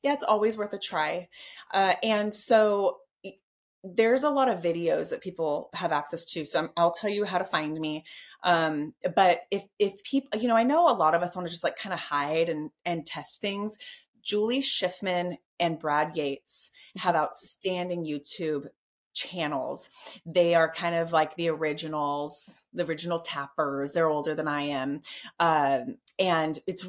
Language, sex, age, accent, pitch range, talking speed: English, female, 30-49, American, 155-190 Hz, 175 wpm